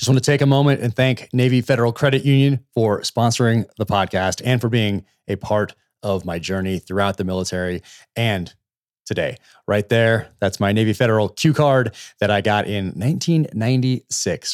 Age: 30-49